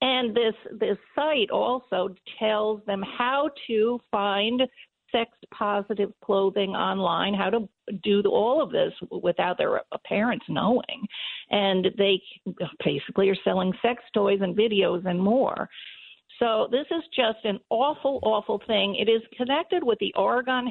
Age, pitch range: 50-69, 200-265 Hz